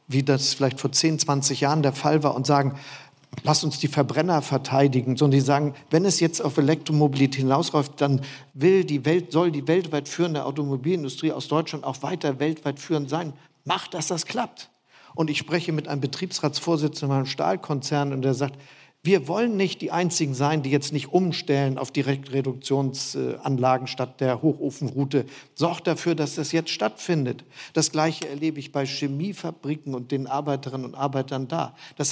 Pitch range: 135-160 Hz